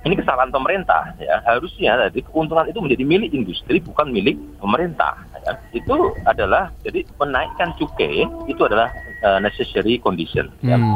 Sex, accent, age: male, native, 30-49